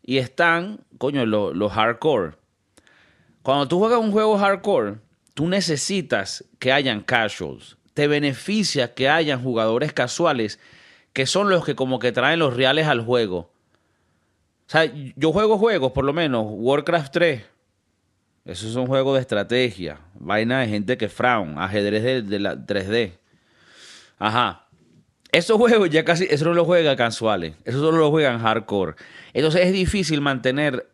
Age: 30-49